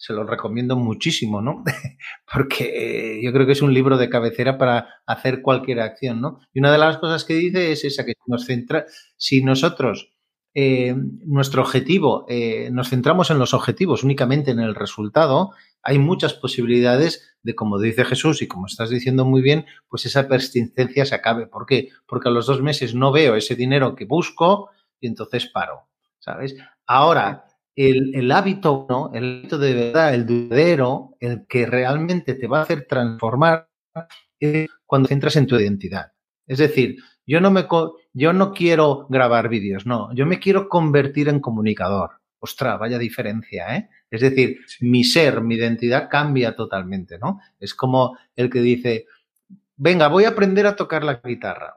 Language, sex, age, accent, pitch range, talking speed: Spanish, male, 30-49, Spanish, 120-155 Hz, 175 wpm